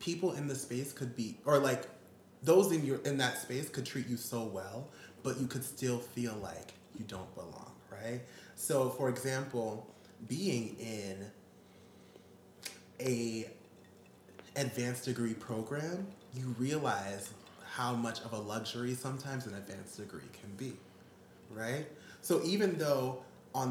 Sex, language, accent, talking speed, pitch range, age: male, English, American, 140 wpm, 105-145 Hz, 20-39